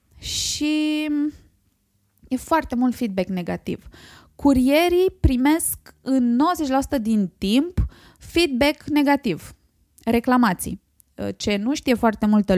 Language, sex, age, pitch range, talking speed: Romanian, female, 20-39, 210-305 Hz, 95 wpm